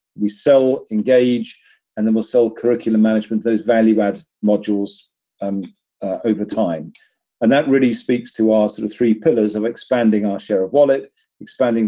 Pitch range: 105-125 Hz